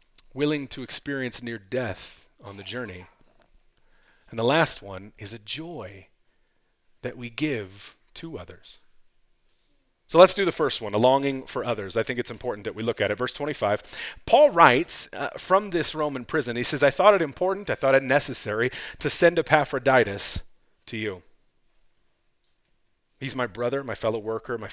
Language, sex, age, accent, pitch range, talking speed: English, male, 30-49, American, 115-165 Hz, 170 wpm